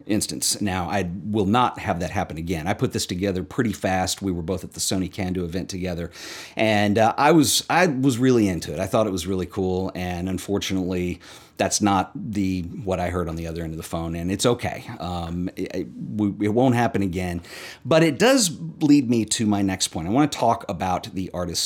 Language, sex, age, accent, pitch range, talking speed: English, male, 40-59, American, 90-115 Hz, 225 wpm